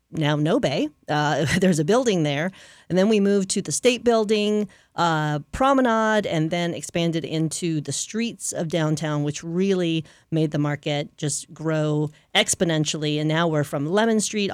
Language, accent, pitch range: English, American, 155-205 Hz